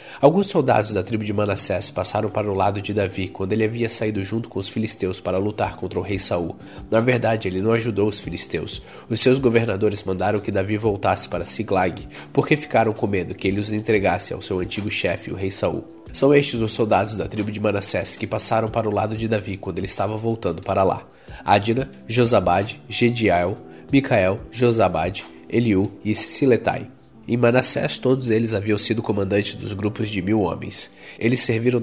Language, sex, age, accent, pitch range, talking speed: Portuguese, male, 20-39, Brazilian, 95-115 Hz, 190 wpm